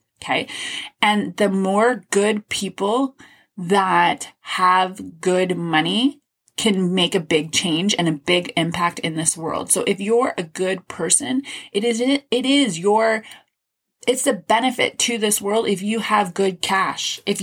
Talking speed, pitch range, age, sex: 155 wpm, 180-225 Hz, 20-39, female